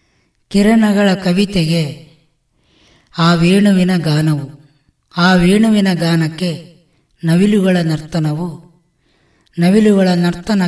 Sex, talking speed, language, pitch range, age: female, 65 wpm, Kannada, 160-195 Hz, 20-39